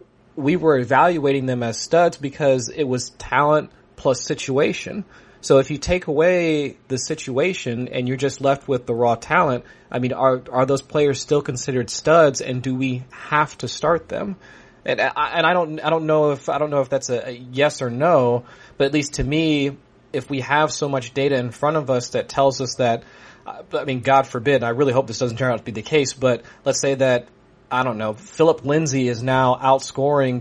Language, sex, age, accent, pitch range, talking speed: English, male, 30-49, American, 125-150 Hz, 210 wpm